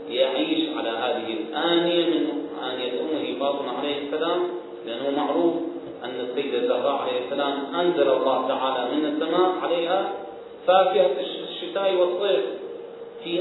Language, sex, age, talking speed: Arabic, male, 40-59, 115 wpm